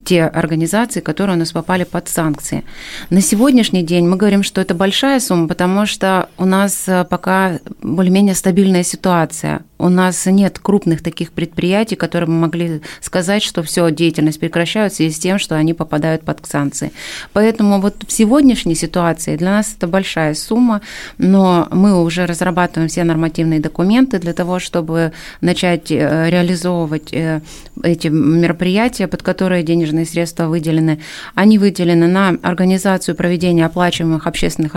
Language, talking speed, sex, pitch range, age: Russian, 140 wpm, female, 165-185 Hz, 30-49